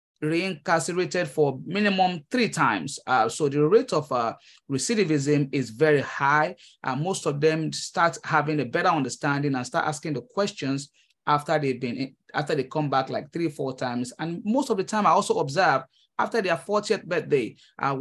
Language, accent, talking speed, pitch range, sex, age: English, Nigerian, 175 wpm, 135-170 Hz, male, 30-49